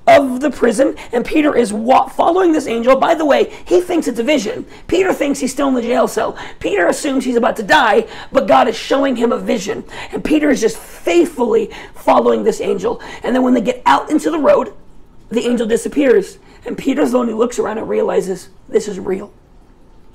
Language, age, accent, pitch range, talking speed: English, 40-59, American, 220-285 Hz, 205 wpm